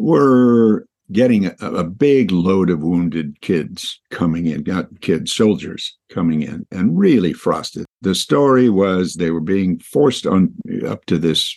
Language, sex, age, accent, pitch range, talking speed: English, male, 60-79, American, 85-105 Hz, 155 wpm